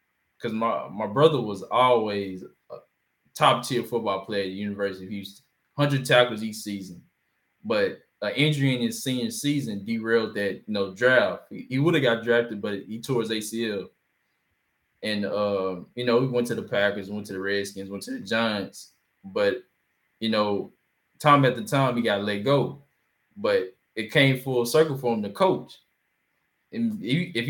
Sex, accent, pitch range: male, American, 105-140 Hz